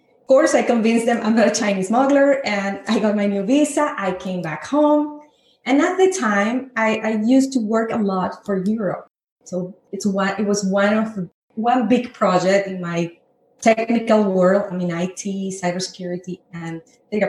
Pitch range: 200-255 Hz